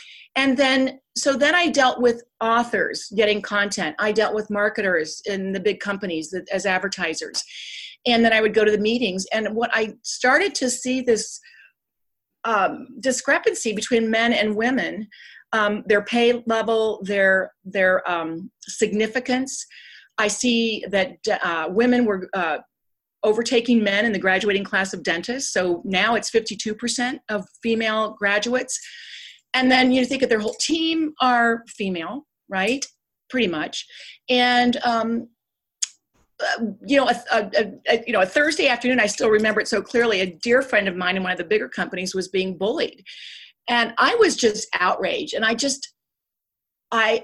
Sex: female